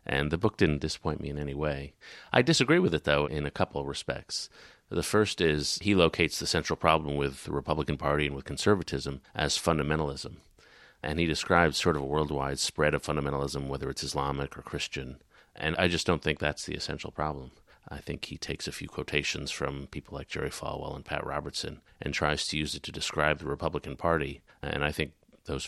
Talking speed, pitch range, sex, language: 210 wpm, 70-85 Hz, male, English